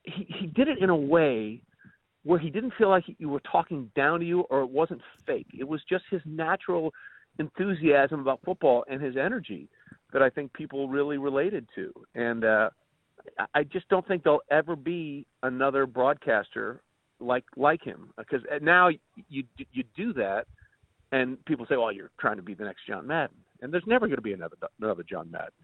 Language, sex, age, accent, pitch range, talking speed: English, male, 40-59, American, 130-175 Hz, 190 wpm